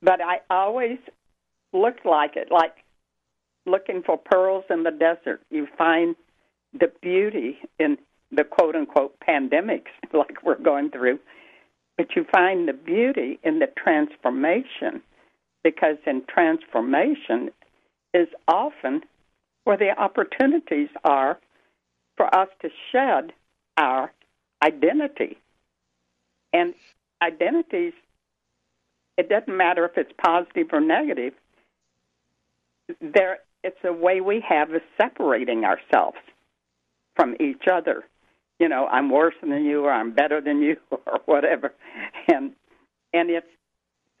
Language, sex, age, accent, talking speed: English, female, 60-79, American, 115 wpm